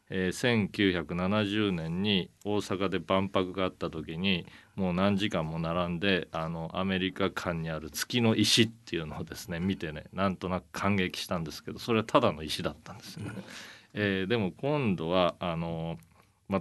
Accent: native